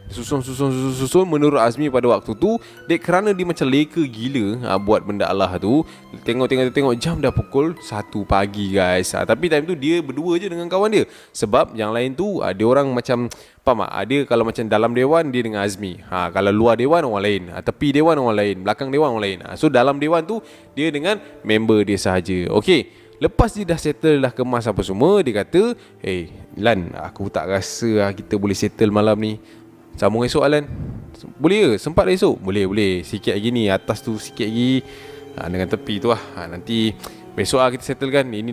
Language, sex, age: Malay, male, 20-39